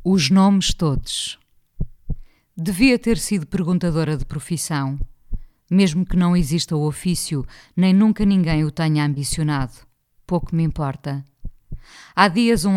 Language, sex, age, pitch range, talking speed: Portuguese, female, 20-39, 145-180 Hz, 125 wpm